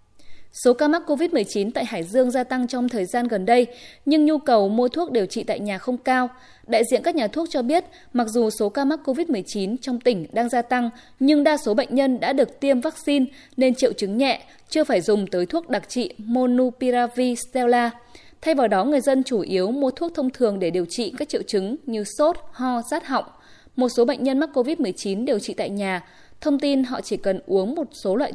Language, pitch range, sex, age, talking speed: Vietnamese, 205-275 Hz, female, 10-29, 220 wpm